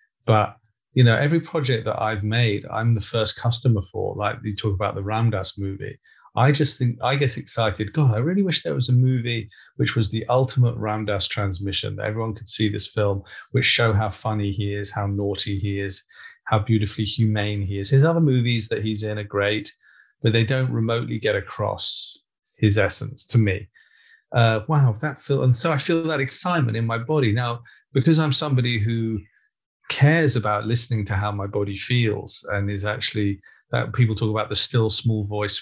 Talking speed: 195 wpm